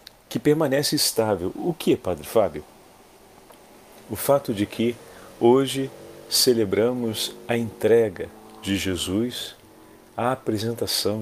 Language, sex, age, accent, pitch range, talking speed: Portuguese, male, 40-59, Brazilian, 100-130 Hz, 100 wpm